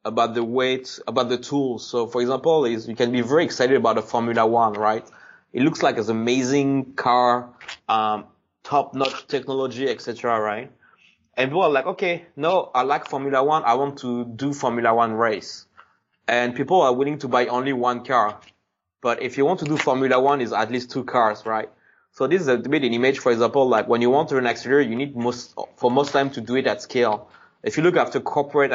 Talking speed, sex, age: 220 wpm, male, 20-39